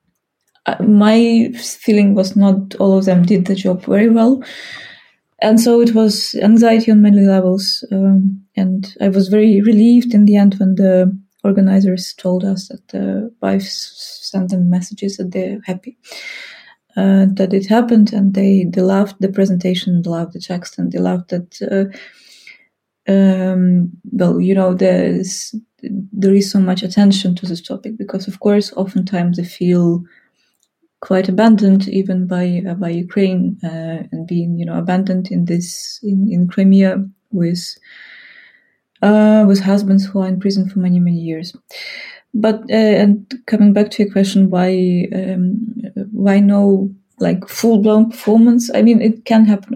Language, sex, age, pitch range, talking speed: English, female, 20-39, 185-215 Hz, 155 wpm